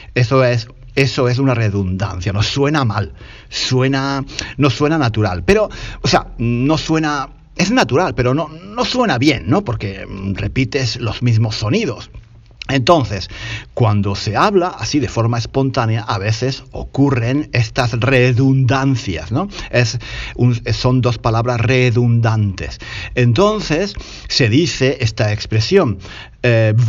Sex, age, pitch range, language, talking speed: male, 50-69, 110-140 Hz, Spanish, 125 wpm